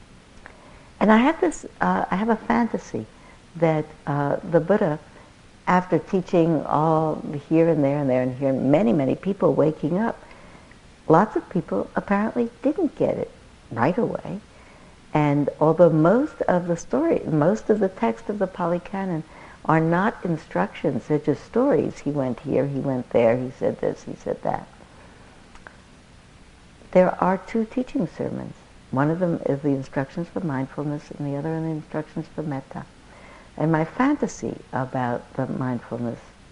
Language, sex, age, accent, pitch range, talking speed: English, female, 60-79, American, 140-185 Hz, 155 wpm